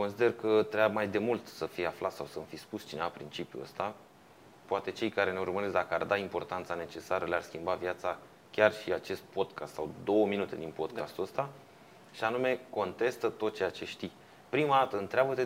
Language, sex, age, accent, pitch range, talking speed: Romanian, male, 30-49, native, 100-125 Hz, 195 wpm